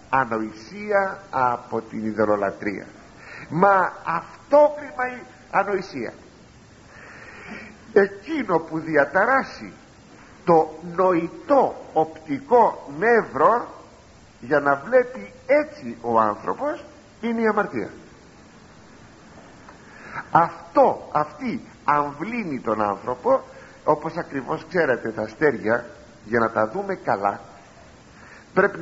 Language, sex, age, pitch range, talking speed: Greek, male, 50-69, 120-180 Hz, 85 wpm